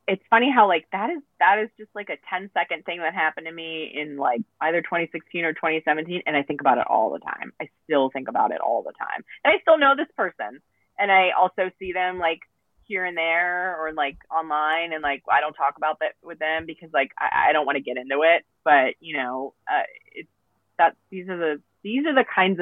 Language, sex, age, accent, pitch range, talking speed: English, female, 20-39, American, 150-210 Hz, 235 wpm